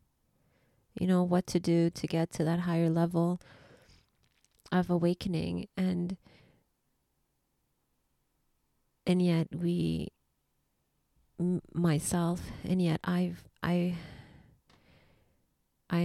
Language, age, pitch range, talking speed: English, 30-49, 165-185 Hz, 90 wpm